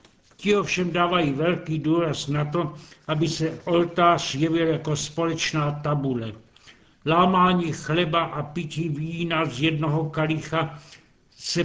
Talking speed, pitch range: 120 wpm, 150-170 Hz